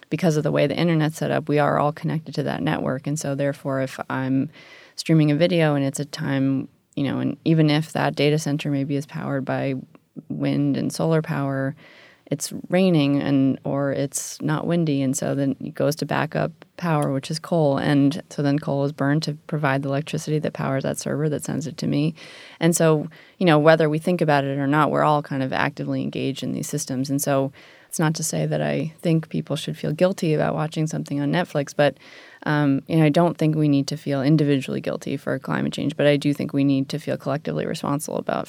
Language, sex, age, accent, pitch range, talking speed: English, female, 20-39, American, 140-160 Hz, 225 wpm